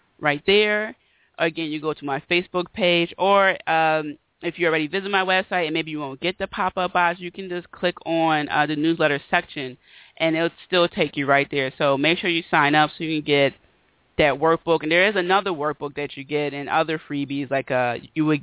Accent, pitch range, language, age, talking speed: American, 150-180 Hz, English, 30-49, 220 wpm